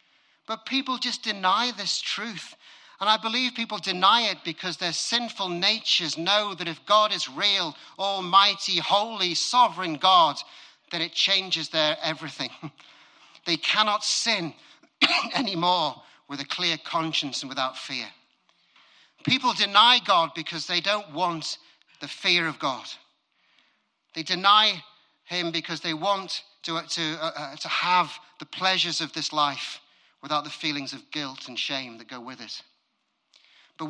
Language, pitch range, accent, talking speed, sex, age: English, 140-195 Hz, British, 145 wpm, male, 40-59